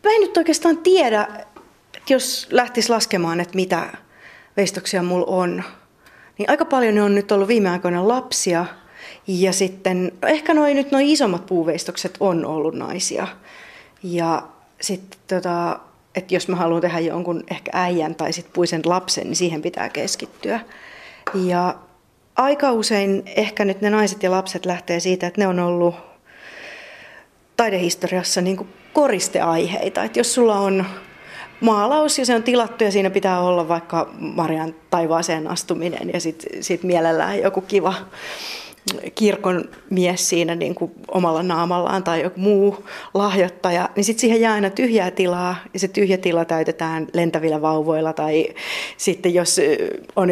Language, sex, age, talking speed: Finnish, female, 30-49, 145 wpm